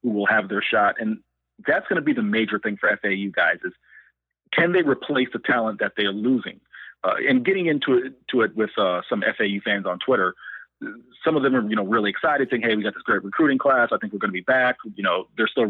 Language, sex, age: English, male, 30-49